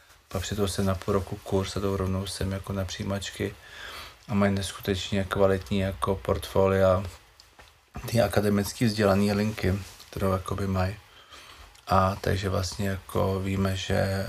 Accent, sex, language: native, male, Czech